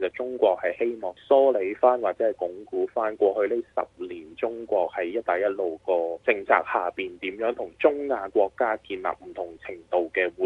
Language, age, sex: Chinese, 20-39, male